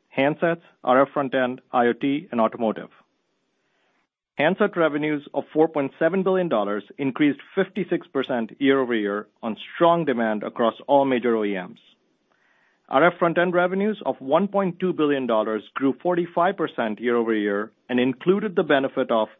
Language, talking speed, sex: English, 110 wpm, male